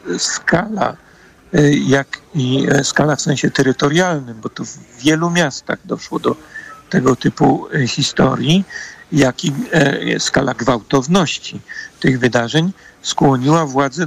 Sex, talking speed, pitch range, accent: male, 105 wpm, 130-155 Hz, native